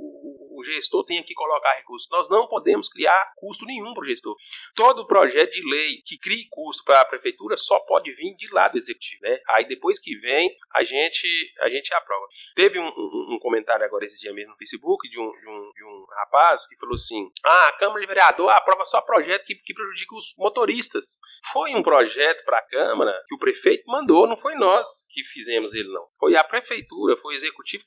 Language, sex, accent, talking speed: Portuguese, male, Brazilian, 210 wpm